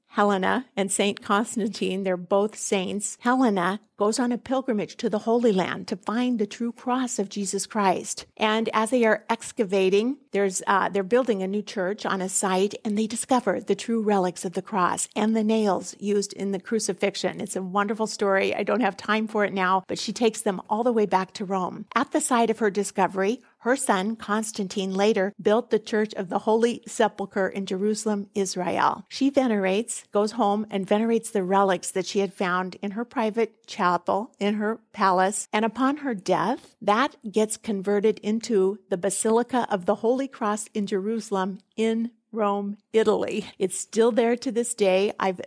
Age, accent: 50-69, American